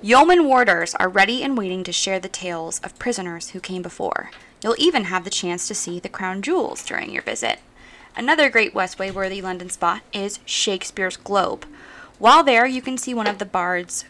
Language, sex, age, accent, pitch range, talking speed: English, female, 20-39, American, 185-255 Hz, 195 wpm